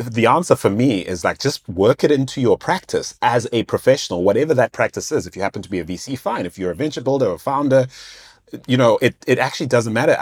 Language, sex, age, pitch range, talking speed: English, male, 30-49, 90-120 Hz, 245 wpm